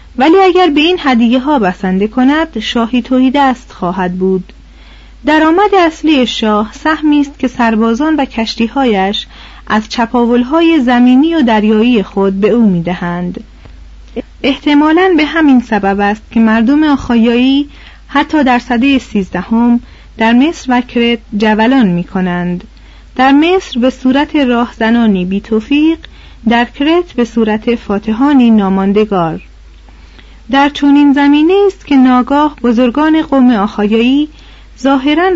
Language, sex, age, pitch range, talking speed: Persian, female, 30-49, 220-285 Hz, 120 wpm